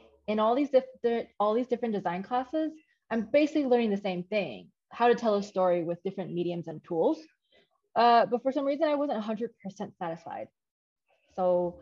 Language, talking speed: English, 175 wpm